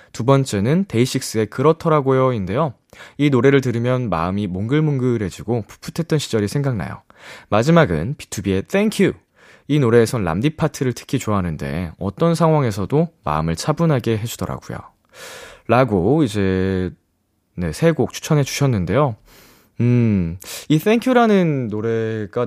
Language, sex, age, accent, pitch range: Korean, male, 20-39, native, 100-145 Hz